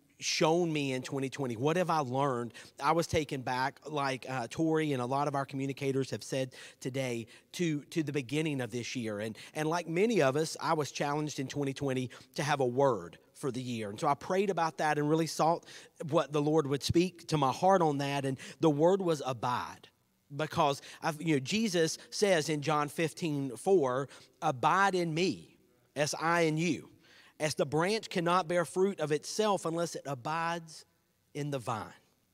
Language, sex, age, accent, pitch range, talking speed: English, male, 40-59, American, 135-170 Hz, 195 wpm